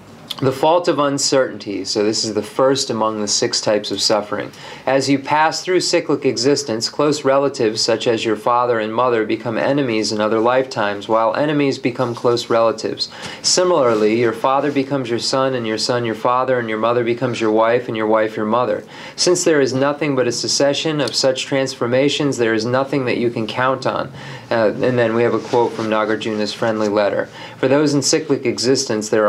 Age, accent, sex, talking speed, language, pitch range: 40-59, American, male, 195 wpm, English, 110-135 Hz